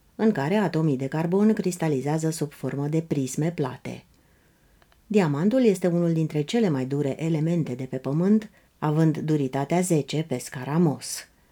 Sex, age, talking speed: female, 30-49, 140 wpm